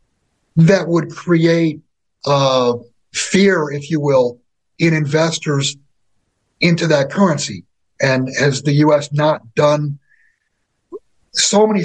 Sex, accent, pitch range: male, American, 140-175 Hz